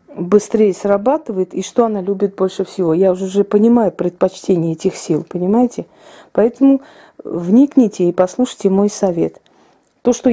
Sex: female